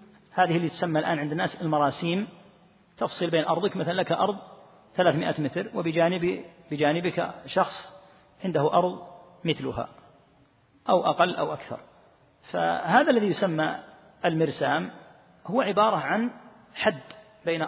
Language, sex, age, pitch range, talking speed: Arabic, male, 40-59, 150-195 Hz, 110 wpm